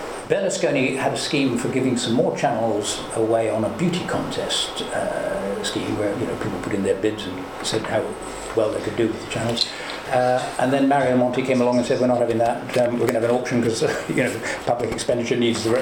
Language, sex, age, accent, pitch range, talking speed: English, male, 60-79, British, 110-130 Hz, 235 wpm